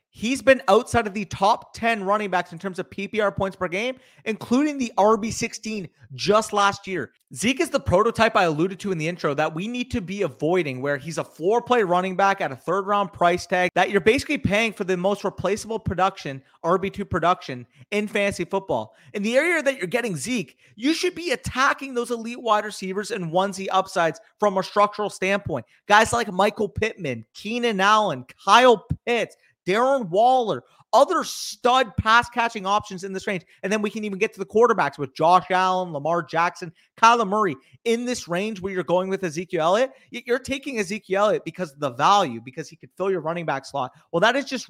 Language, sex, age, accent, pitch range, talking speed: English, male, 30-49, American, 180-230 Hz, 200 wpm